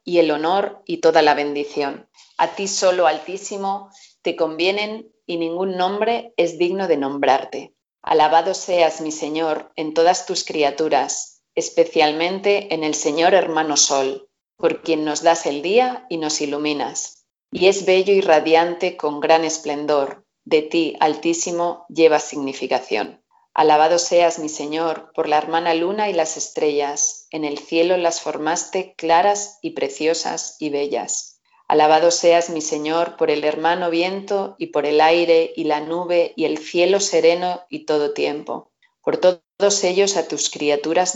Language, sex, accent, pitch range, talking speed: Spanish, female, Spanish, 150-180 Hz, 155 wpm